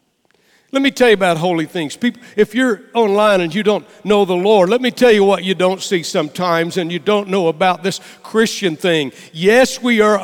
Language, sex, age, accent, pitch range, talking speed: English, male, 60-79, American, 185-235 Hz, 215 wpm